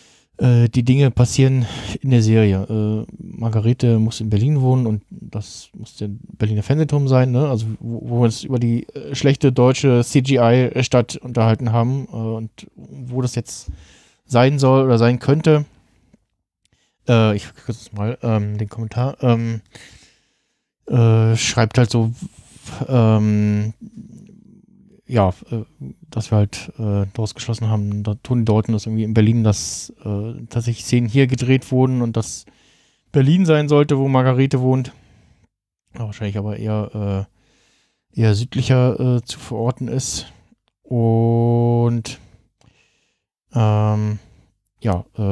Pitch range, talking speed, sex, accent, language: 110-130 Hz, 130 wpm, male, German, German